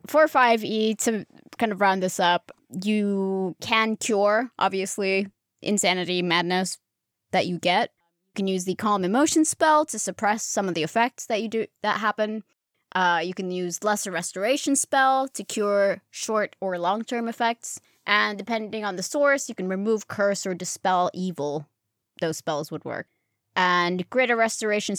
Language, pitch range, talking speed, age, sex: English, 180-220 Hz, 165 wpm, 20-39, female